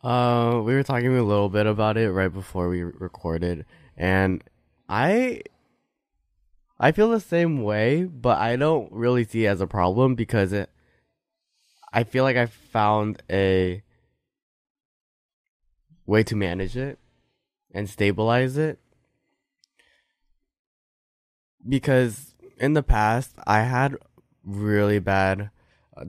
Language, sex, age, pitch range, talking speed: English, male, 20-39, 95-125 Hz, 125 wpm